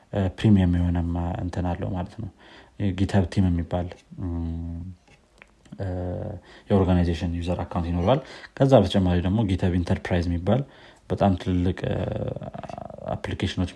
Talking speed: 90 wpm